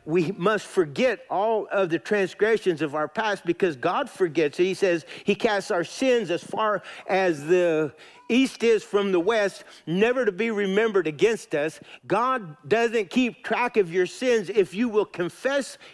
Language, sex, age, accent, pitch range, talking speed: English, male, 50-69, American, 165-235 Hz, 170 wpm